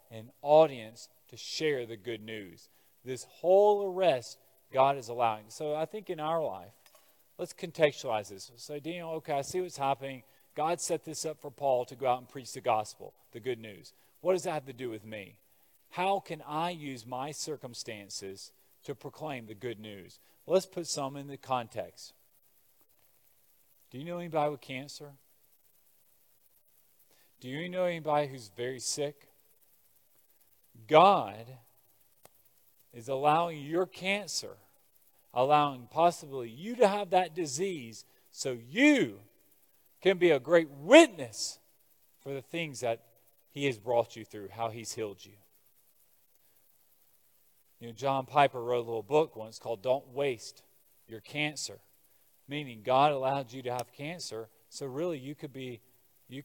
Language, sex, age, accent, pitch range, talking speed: English, male, 40-59, American, 120-155 Hz, 150 wpm